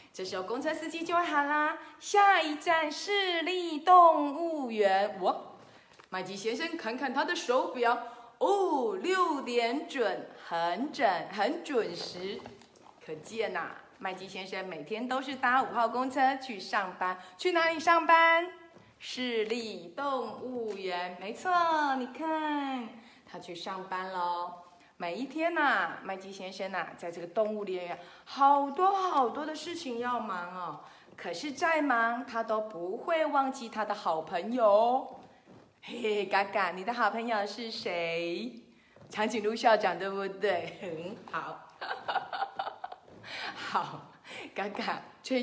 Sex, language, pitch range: female, Chinese, 190-310 Hz